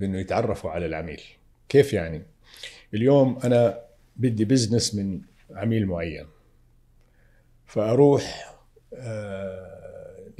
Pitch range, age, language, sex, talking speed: 95-125 Hz, 50-69, Arabic, male, 85 wpm